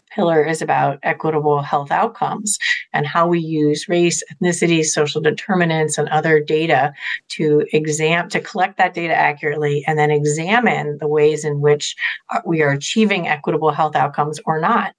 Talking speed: 155 wpm